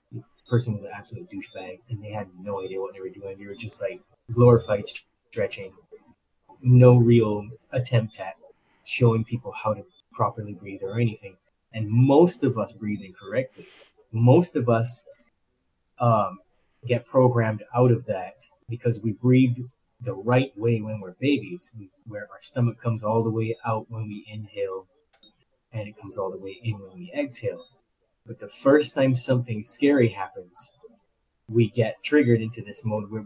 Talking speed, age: 165 wpm, 20-39